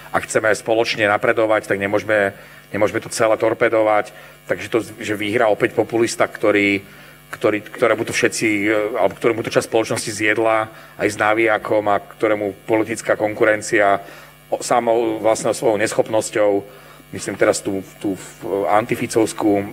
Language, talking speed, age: Slovak, 125 wpm, 40-59